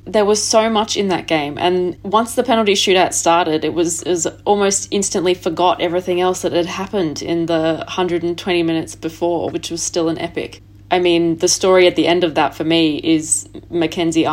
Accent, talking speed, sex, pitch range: Australian, 200 wpm, female, 160-185 Hz